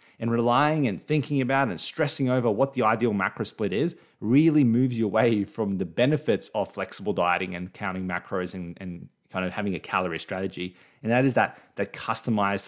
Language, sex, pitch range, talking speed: English, male, 100-130 Hz, 195 wpm